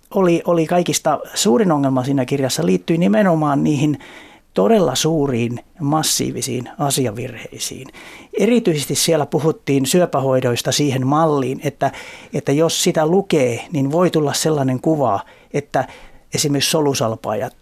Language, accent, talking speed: Finnish, native, 110 wpm